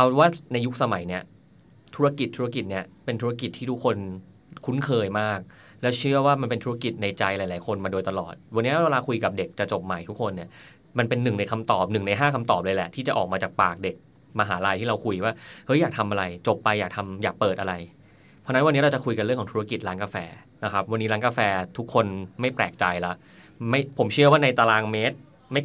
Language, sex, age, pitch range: Thai, male, 20-39, 95-125 Hz